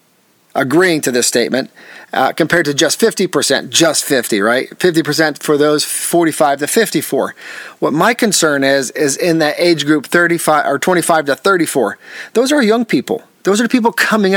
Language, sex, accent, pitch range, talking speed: English, male, American, 150-220 Hz, 170 wpm